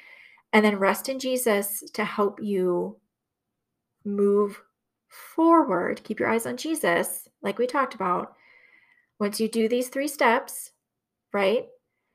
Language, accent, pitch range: English, American, 205-245 Hz